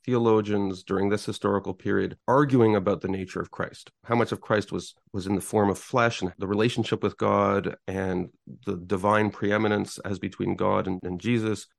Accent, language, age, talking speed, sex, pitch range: Canadian, English, 40-59, 190 wpm, male, 100-125 Hz